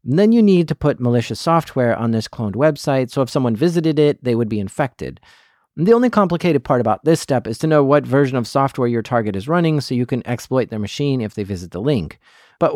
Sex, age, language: male, 40-59, English